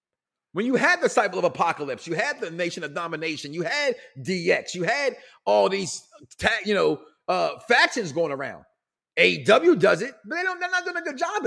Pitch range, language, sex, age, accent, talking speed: 220-345 Hz, English, male, 30-49, American, 200 wpm